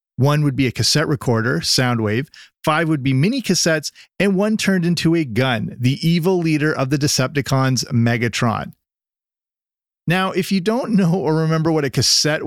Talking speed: 170 wpm